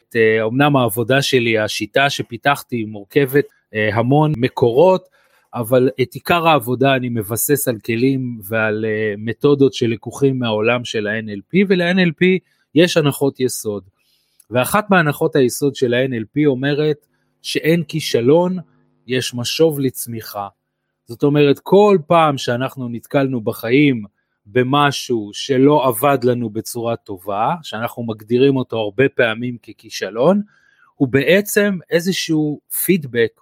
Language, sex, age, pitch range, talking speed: Hebrew, male, 30-49, 120-150 Hz, 110 wpm